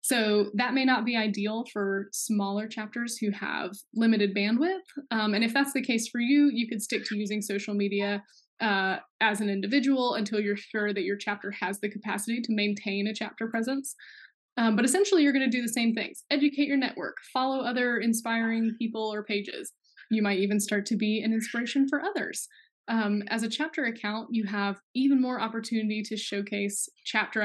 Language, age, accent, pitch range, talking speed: English, 10-29, American, 205-240 Hz, 190 wpm